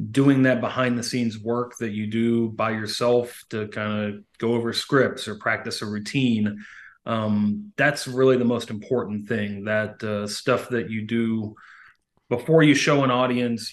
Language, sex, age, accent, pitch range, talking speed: English, male, 30-49, American, 105-125 Hz, 160 wpm